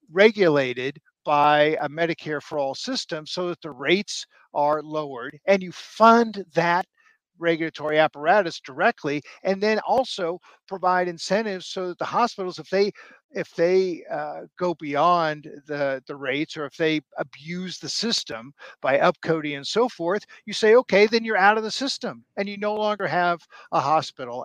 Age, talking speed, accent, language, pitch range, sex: 50-69, 160 wpm, American, English, 155-200 Hz, male